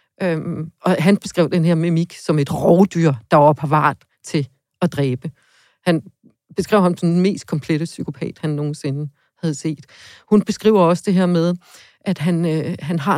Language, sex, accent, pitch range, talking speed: Danish, female, native, 160-205 Hz, 180 wpm